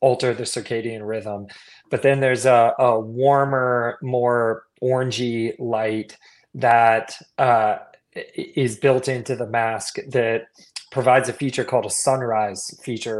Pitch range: 115-135 Hz